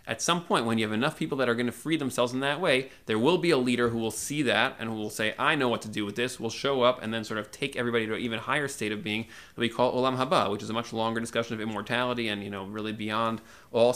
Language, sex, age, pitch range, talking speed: English, male, 20-39, 115-140 Hz, 310 wpm